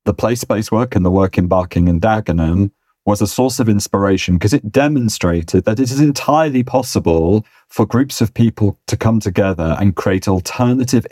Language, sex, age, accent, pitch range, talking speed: English, male, 40-59, British, 90-105 Hz, 180 wpm